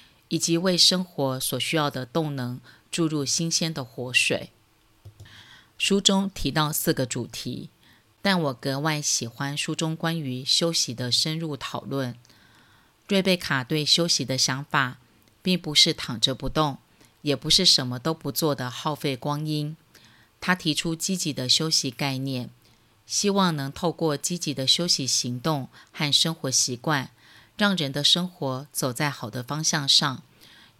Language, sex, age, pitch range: Chinese, female, 30-49, 125-160 Hz